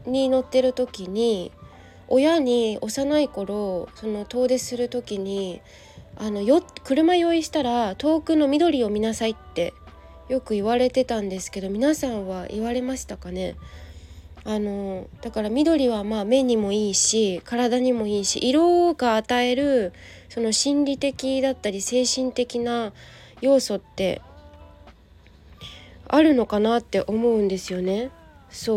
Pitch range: 200-265 Hz